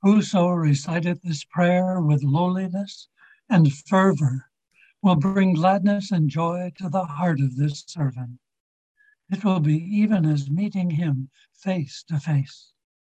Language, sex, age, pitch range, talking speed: English, male, 60-79, 155-210 Hz, 135 wpm